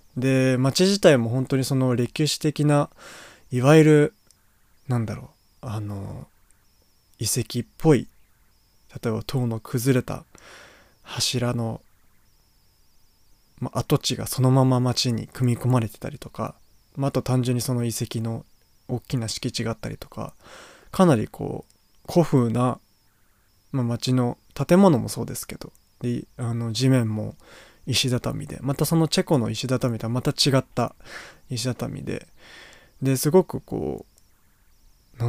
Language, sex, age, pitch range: Japanese, male, 20-39, 105-140 Hz